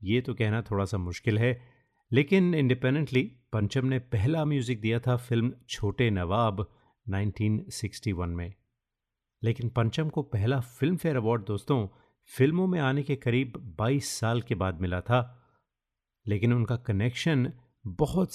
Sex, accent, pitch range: male, native, 105-130 Hz